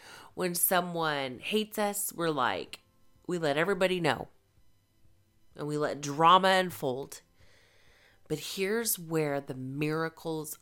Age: 30-49